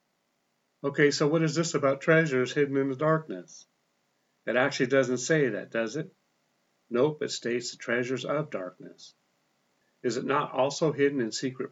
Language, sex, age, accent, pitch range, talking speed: English, male, 50-69, American, 110-140 Hz, 165 wpm